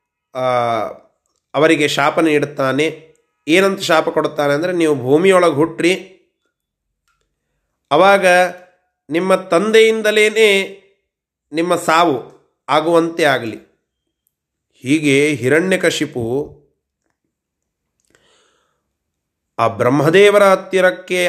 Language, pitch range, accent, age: Kannada, 145-185 Hz, native, 30-49